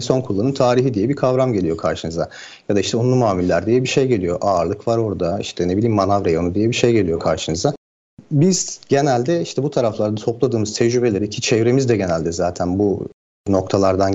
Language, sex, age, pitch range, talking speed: Turkish, male, 50-69, 100-140 Hz, 185 wpm